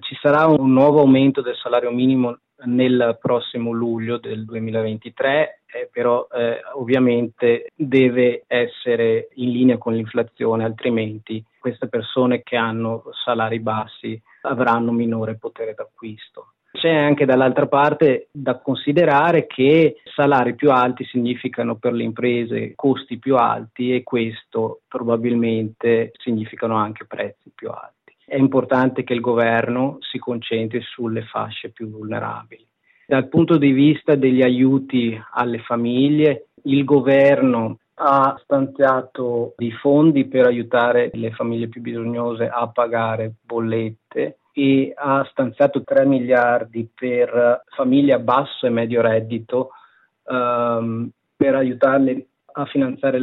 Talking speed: 125 wpm